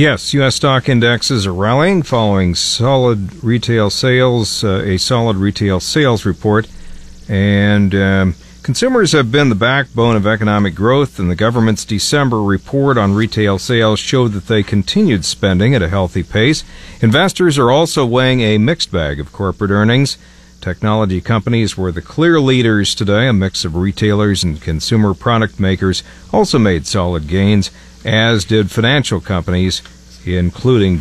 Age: 50-69